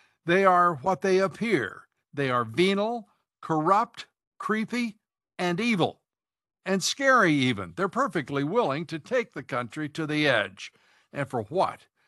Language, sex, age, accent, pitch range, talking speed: English, male, 60-79, American, 150-195 Hz, 140 wpm